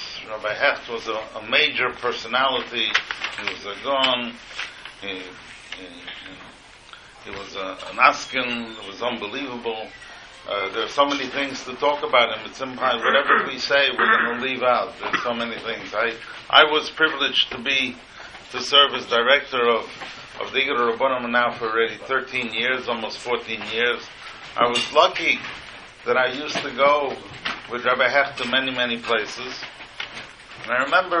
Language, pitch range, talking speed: English, 125-150 Hz, 165 wpm